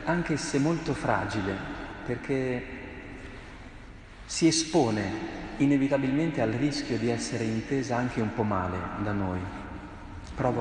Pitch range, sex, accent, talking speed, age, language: 105-135 Hz, male, native, 115 wpm, 40-59, Italian